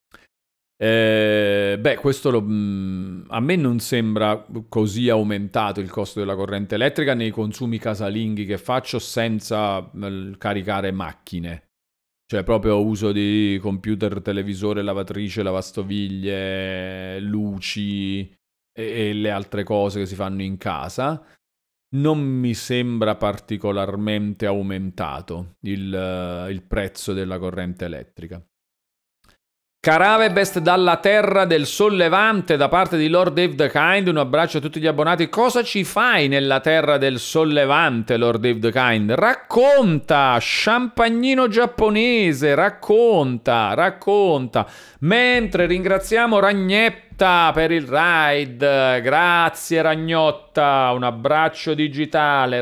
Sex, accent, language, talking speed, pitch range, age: male, native, Italian, 115 wpm, 100-160 Hz, 40-59